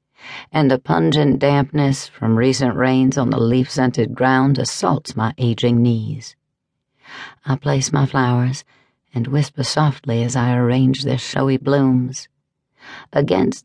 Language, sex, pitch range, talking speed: English, female, 125-145 Hz, 125 wpm